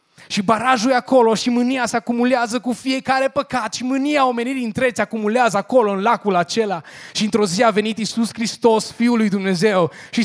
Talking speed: 180 wpm